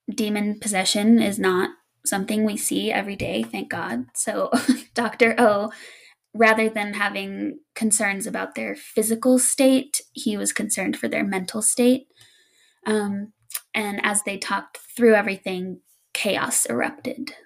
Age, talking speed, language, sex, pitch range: 10-29, 130 wpm, English, female, 210-245 Hz